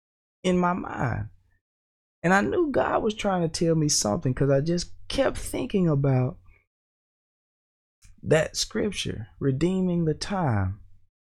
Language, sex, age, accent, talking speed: English, male, 20-39, American, 125 wpm